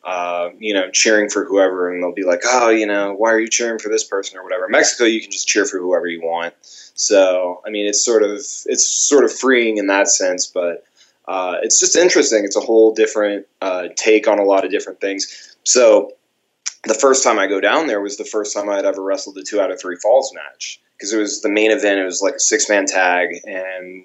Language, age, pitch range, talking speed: English, 20-39, 95-115 Hz, 245 wpm